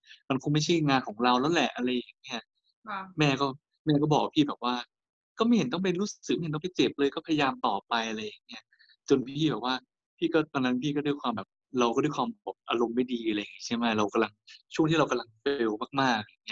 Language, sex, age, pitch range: Thai, male, 20-39, 120-165 Hz